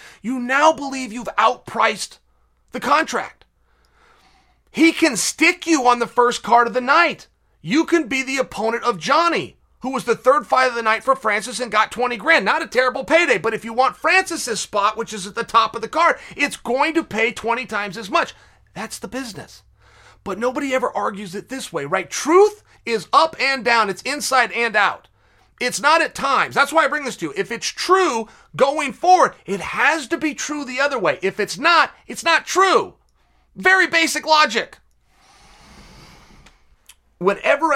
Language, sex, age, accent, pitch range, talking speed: English, male, 30-49, American, 175-270 Hz, 190 wpm